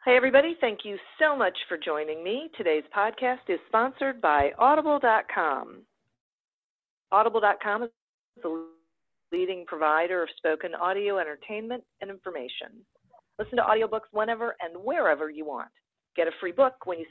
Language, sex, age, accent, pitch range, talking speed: English, female, 40-59, American, 155-230 Hz, 140 wpm